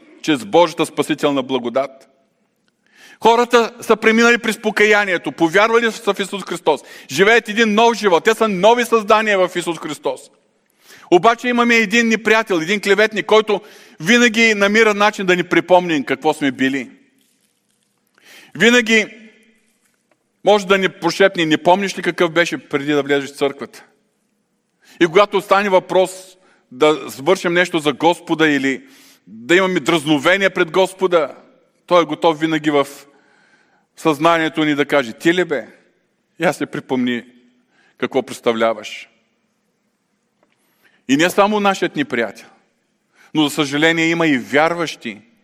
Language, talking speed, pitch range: Bulgarian, 130 wpm, 155-225 Hz